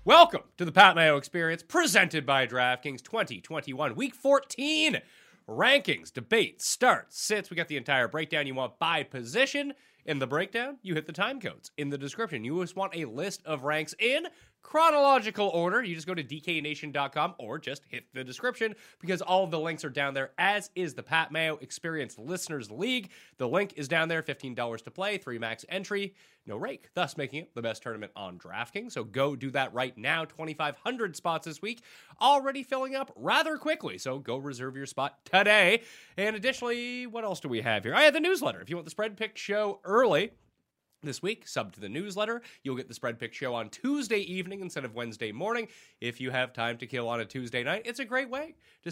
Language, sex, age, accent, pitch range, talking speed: English, male, 30-49, American, 140-215 Hz, 205 wpm